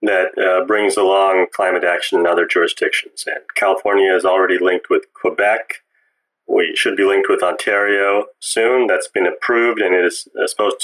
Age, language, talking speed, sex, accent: 30-49, English, 165 wpm, male, American